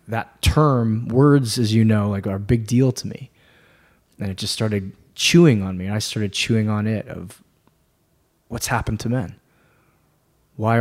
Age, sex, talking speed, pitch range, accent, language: 20-39, male, 170 wpm, 100-120 Hz, American, English